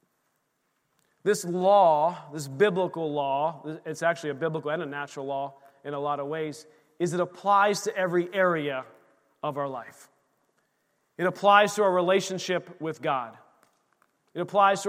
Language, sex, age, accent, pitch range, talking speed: English, male, 40-59, American, 150-185 Hz, 150 wpm